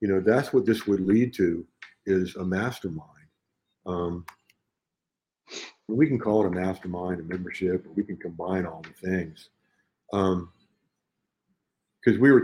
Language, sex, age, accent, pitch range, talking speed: English, male, 50-69, American, 95-110 Hz, 150 wpm